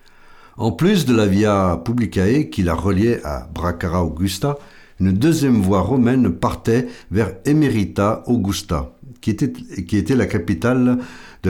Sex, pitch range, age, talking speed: male, 85-110 Hz, 60-79, 140 wpm